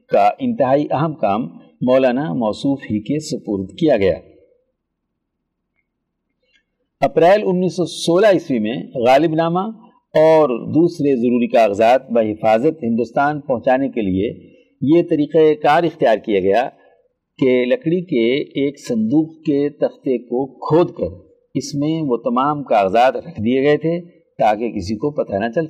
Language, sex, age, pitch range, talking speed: Urdu, male, 60-79, 130-170 Hz, 135 wpm